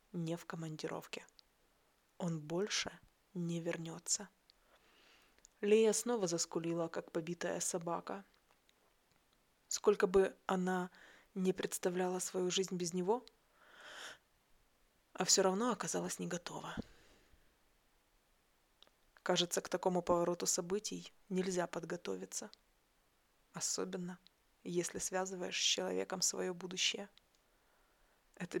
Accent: native